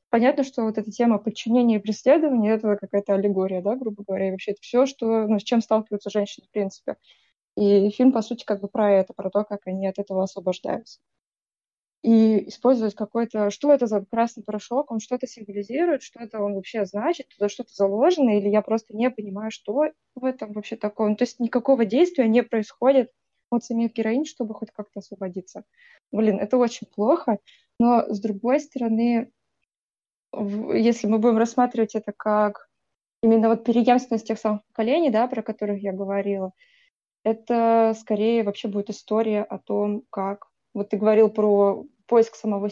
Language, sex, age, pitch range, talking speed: Ukrainian, female, 20-39, 205-240 Hz, 170 wpm